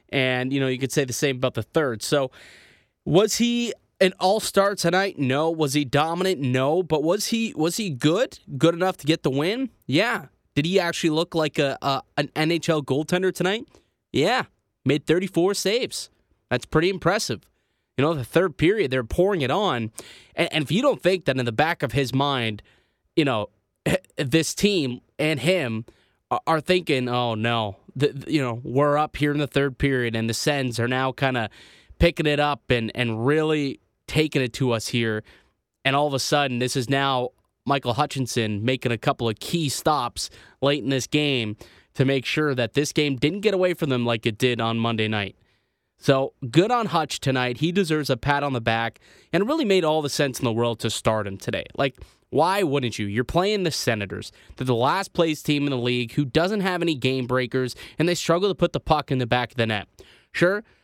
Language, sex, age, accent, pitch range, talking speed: English, male, 20-39, American, 120-165 Hz, 210 wpm